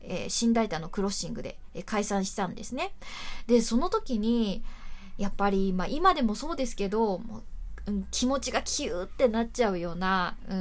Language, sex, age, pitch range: Japanese, female, 20-39, 195-250 Hz